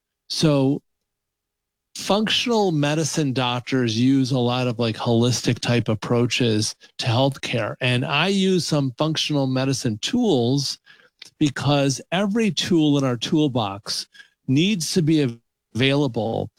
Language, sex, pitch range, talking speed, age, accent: English, male, 125-155 Hz, 110 wpm, 40-59, American